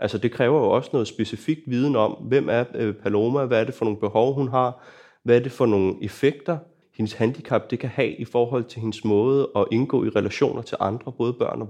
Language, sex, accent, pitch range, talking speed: English, male, Danish, 110-140 Hz, 230 wpm